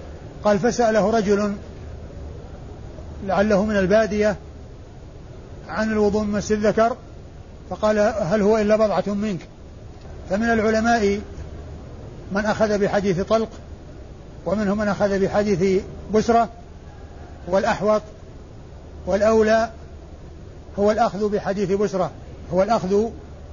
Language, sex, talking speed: Arabic, male, 90 wpm